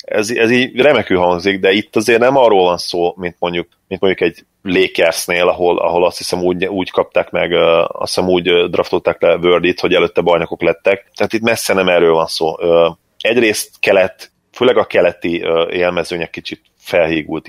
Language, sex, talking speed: Hungarian, male, 175 wpm